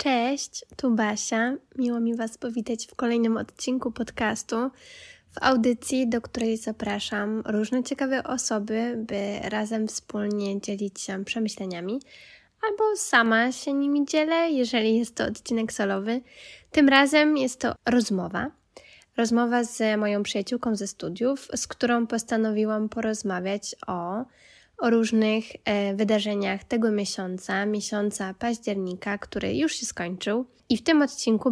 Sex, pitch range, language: female, 205-245 Hz, Polish